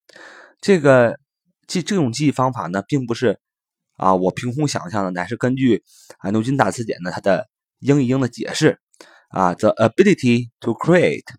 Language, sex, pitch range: Chinese, male, 100-125 Hz